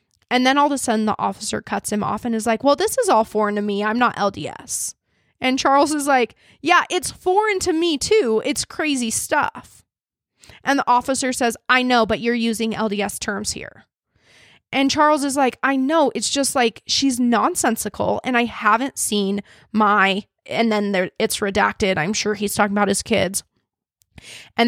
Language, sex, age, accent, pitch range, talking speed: English, female, 20-39, American, 215-265 Hz, 190 wpm